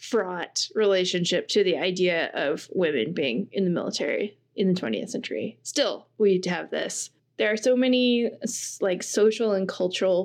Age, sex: 20-39, female